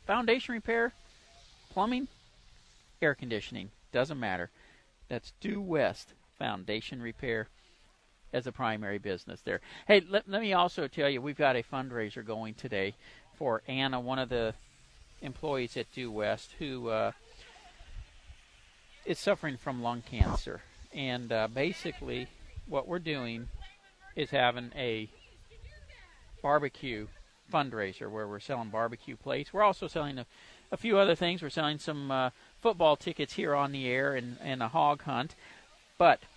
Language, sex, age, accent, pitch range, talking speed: English, male, 50-69, American, 115-160 Hz, 140 wpm